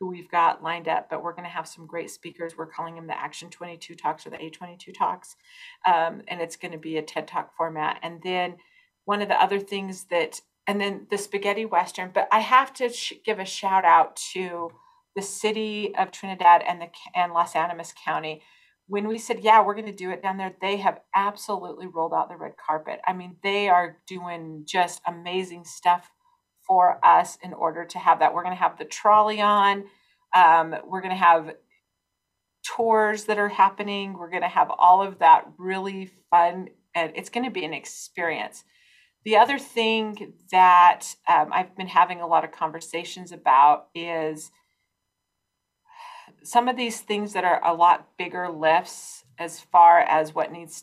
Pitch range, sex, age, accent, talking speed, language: 170-205 Hz, female, 40-59, American, 190 wpm, English